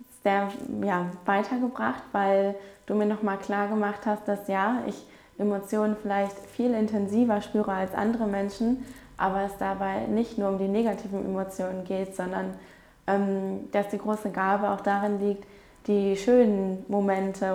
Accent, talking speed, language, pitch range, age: German, 150 wpm, German, 195-210 Hz, 20-39